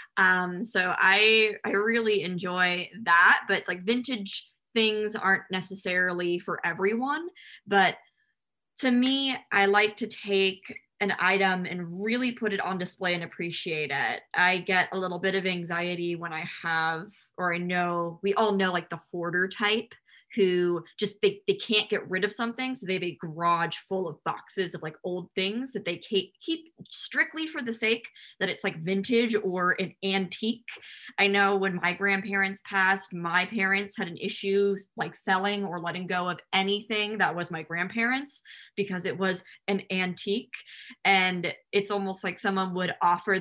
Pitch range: 180-215 Hz